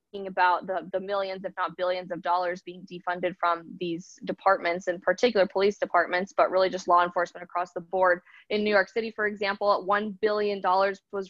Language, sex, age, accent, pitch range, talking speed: English, female, 20-39, American, 185-210 Hz, 185 wpm